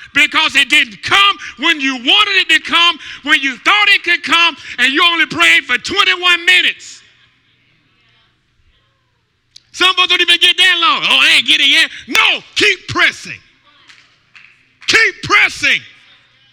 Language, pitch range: English, 245-295 Hz